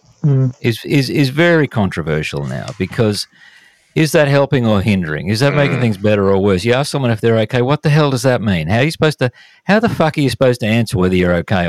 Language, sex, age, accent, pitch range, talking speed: English, male, 50-69, Australian, 95-135 Hz, 245 wpm